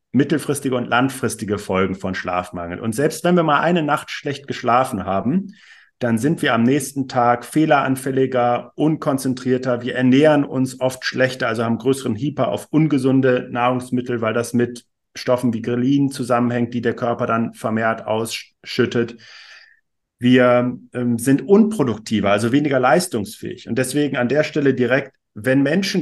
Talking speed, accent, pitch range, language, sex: 150 wpm, German, 120-140 Hz, German, male